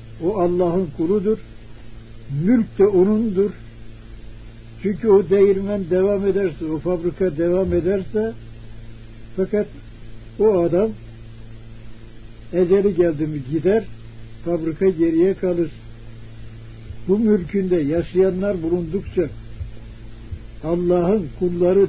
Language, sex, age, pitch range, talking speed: Turkish, male, 60-79, 115-185 Hz, 85 wpm